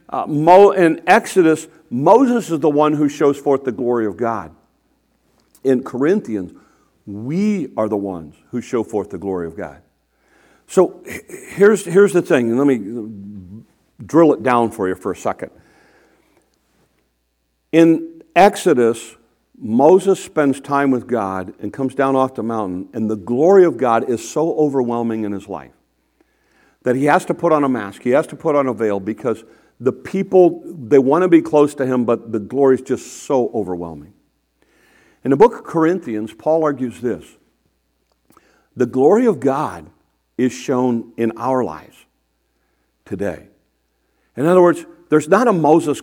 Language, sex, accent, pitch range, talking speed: English, male, American, 110-160 Hz, 160 wpm